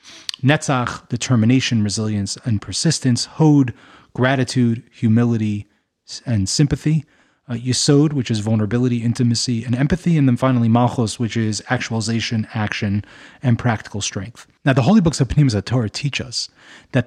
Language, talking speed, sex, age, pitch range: English, 135 wpm, male, 30-49, 115-145 Hz